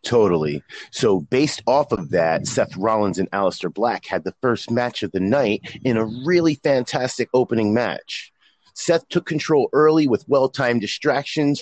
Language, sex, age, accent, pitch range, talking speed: English, male, 30-49, American, 110-145 Hz, 160 wpm